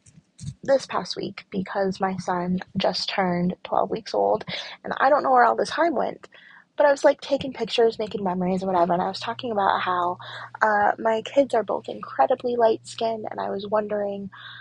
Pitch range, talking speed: 190-250 Hz, 195 wpm